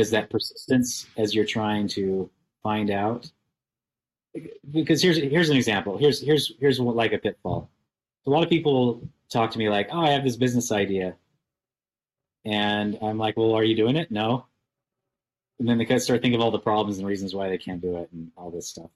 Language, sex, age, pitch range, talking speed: English, male, 30-49, 95-120 Hz, 210 wpm